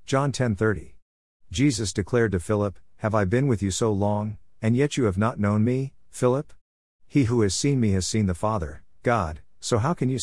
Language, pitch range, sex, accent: English, 90-120 Hz, male, American